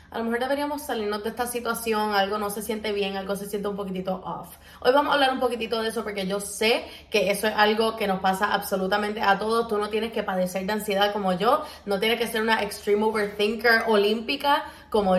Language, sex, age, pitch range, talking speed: Spanish, female, 20-39, 200-270 Hz, 230 wpm